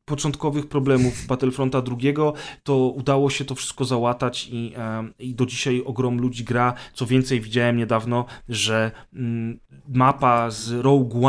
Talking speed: 135 wpm